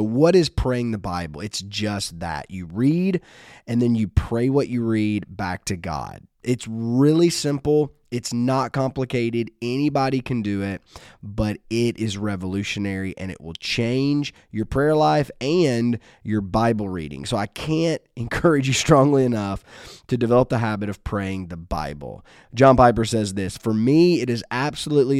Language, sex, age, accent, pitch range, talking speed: English, male, 20-39, American, 100-125 Hz, 165 wpm